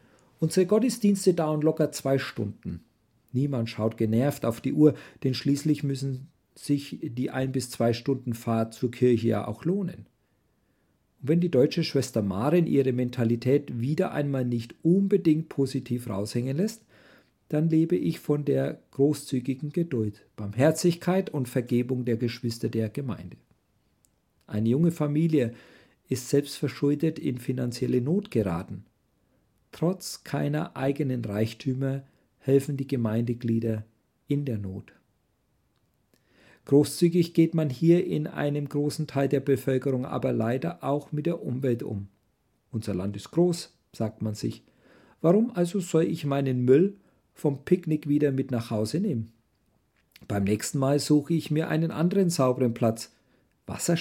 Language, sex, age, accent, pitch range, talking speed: German, male, 50-69, German, 120-160 Hz, 135 wpm